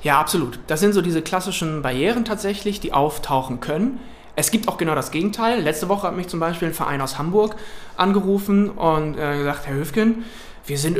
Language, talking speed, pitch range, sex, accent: German, 190 wpm, 145-200 Hz, male, German